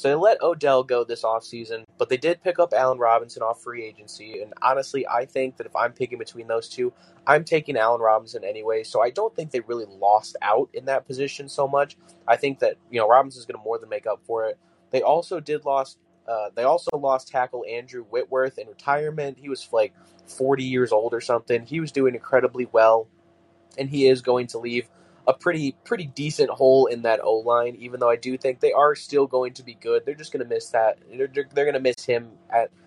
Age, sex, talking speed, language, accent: 20-39, male, 230 wpm, English, American